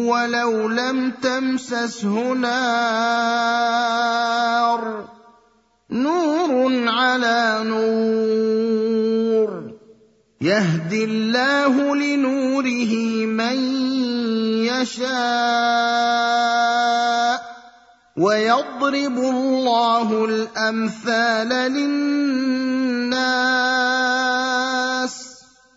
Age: 30-49